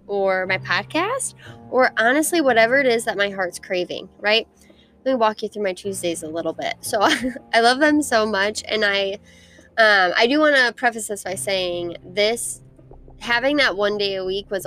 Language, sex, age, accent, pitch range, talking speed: English, female, 10-29, American, 180-235 Hz, 195 wpm